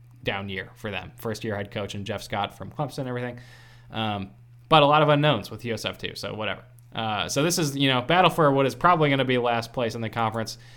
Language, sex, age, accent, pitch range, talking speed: English, male, 20-39, American, 115-140 Hz, 245 wpm